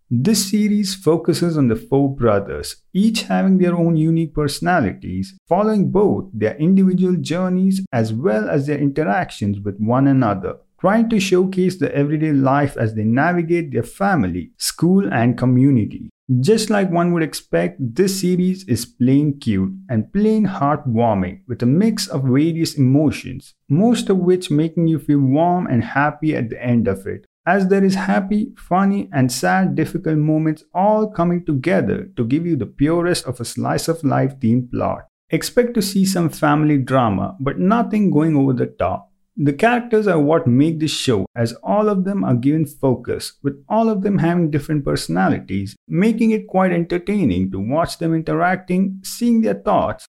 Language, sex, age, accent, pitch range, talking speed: English, male, 50-69, Indian, 125-190 Hz, 170 wpm